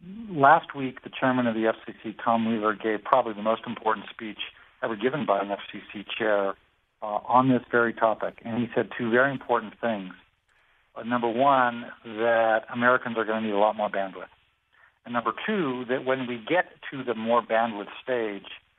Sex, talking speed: male, 185 wpm